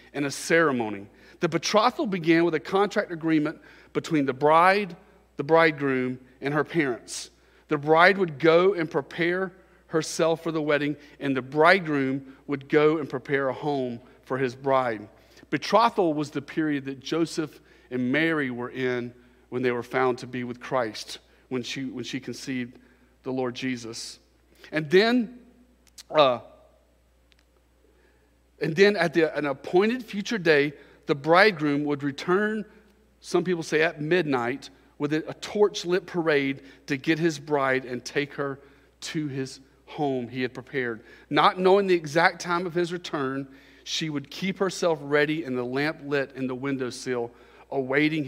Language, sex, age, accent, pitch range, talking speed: English, male, 40-59, American, 125-165 Hz, 155 wpm